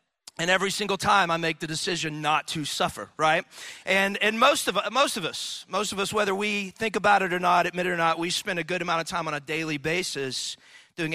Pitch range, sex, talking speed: 175-240 Hz, male, 240 wpm